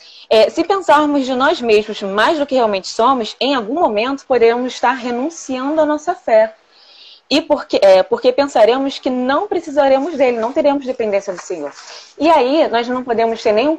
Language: Portuguese